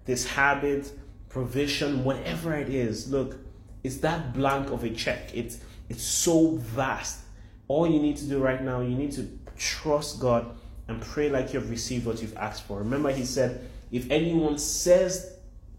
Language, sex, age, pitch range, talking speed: English, male, 30-49, 125-175 Hz, 165 wpm